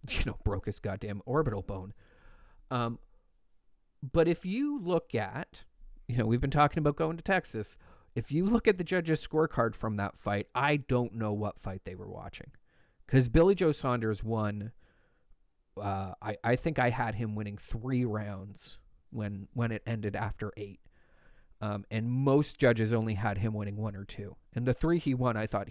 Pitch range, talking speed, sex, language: 105-130 Hz, 185 wpm, male, English